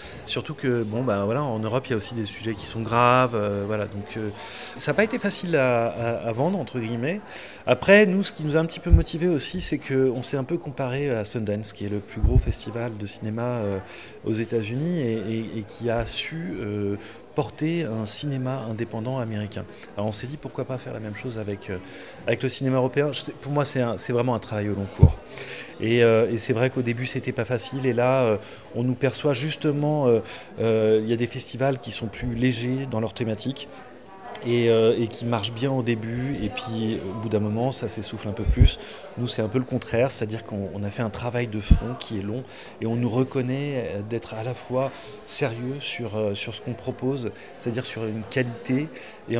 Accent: French